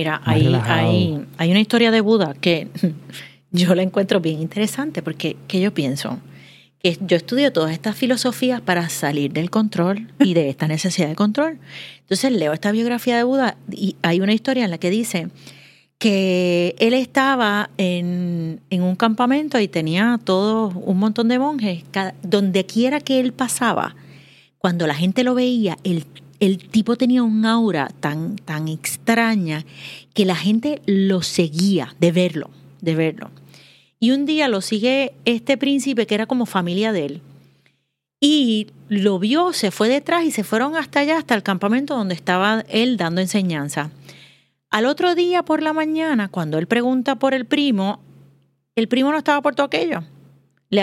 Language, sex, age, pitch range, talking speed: Spanish, female, 30-49, 170-250 Hz, 170 wpm